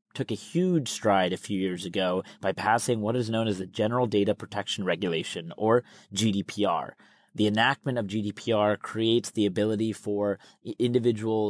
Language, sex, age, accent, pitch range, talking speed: English, male, 30-49, American, 100-120 Hz, 155 wpm